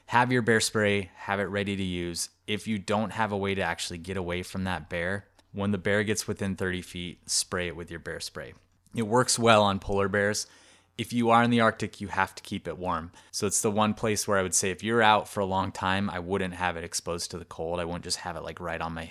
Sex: male